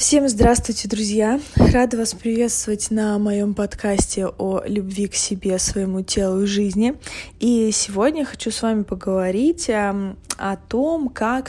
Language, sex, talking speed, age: Russian, female, 135 wpm, 20-39